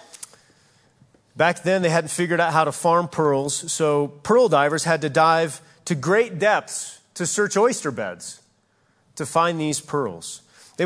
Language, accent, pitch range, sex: English, American, 130-180 Hz, male